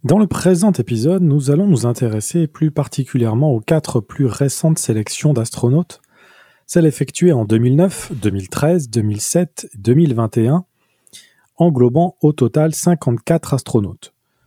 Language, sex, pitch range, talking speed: French, male, 120-165 Hz, 115 wpm